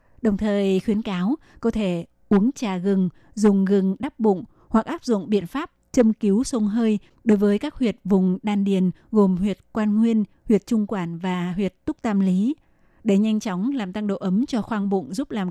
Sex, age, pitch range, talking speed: female, 20-39, 190-225 Hz, 205 wpm